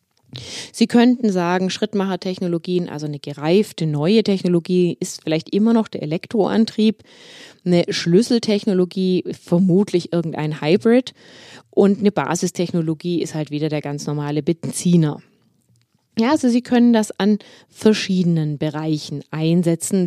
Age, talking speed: 20-39, 115 wpm